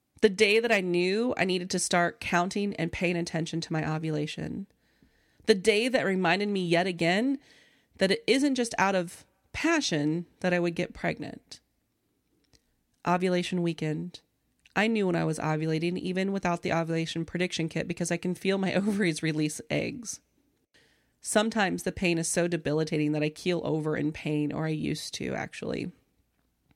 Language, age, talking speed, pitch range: English, 30-49, 165 wpm, 165-200 Hz